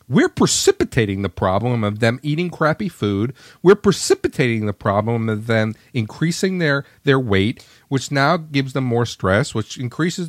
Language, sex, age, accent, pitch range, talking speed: English, male, 40-59, American, 110-180 Hz, 155 wpm